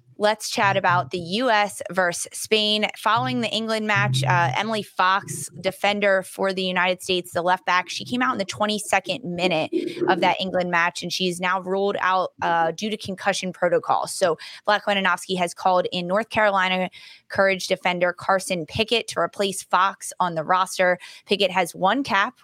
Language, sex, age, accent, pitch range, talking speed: English, female, 20-39, American, 175-205 Hz, 175 wpm